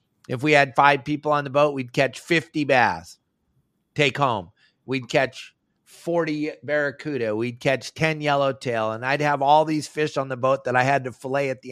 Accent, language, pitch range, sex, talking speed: American, English, 130-165 Hz, male, 195 wpm